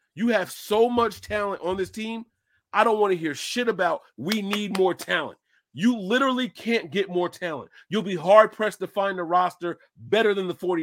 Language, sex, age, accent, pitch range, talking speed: English, male, 40-59, American, 170-215 Hz, 195 wpm